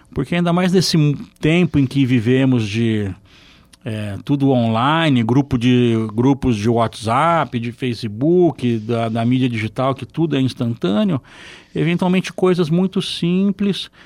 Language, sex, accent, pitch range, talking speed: Portuguese, male, Brazilian, 120-160 Hz, 130 wpm